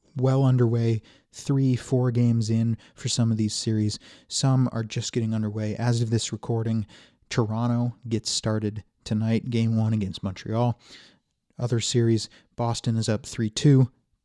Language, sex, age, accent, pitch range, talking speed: English, male, 30-49, American, 105-120 Hz, 140 wpm